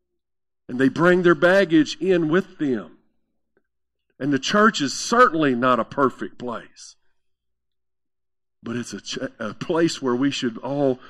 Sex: male